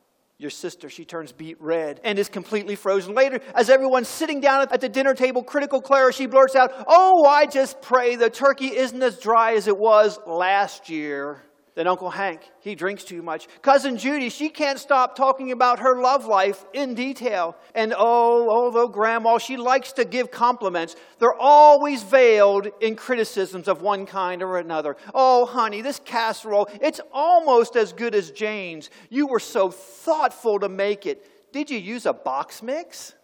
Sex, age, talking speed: male, 40-59, 180 wpm